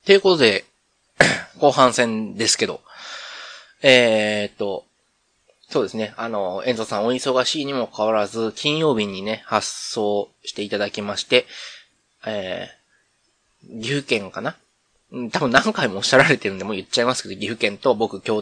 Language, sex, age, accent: Japanese, male, 20-39, native